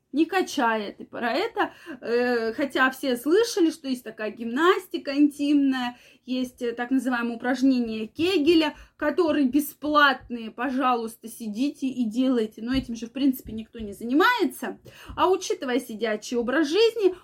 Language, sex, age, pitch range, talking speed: Russian, female, 20-39, 245-315 Hz, 130 wpm